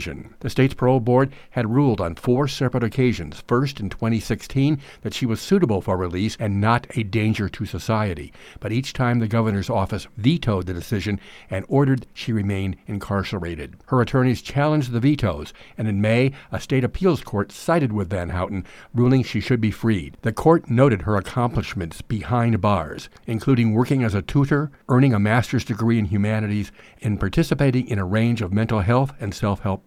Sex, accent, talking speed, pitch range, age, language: male, American, 175 wpm, 100-125 Hz, 60-79, English